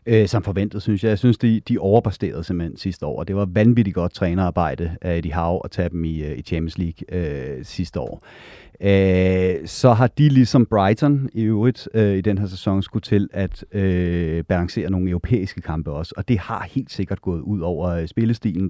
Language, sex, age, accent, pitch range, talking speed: Danish, male, 30-49, native, 90-115 Hz, 200 wpm